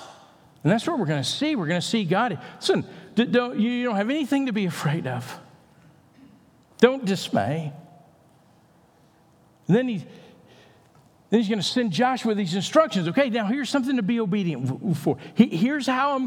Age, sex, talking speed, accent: 50-69, male, 170 wpm, American